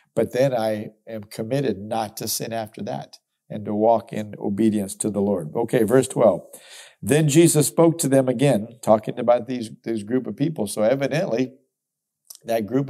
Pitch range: 110-130 Hz